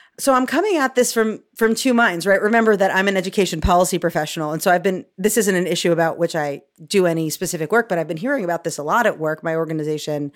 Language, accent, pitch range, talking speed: English, American, 155-205 Hz, 255 wpm